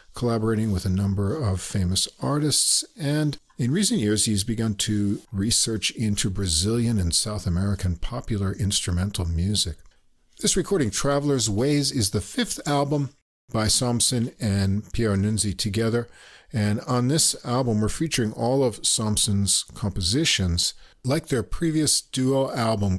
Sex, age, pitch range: male, 50-69, 95-125 Hz